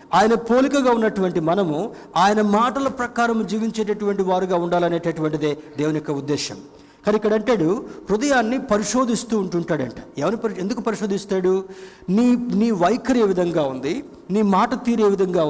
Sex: male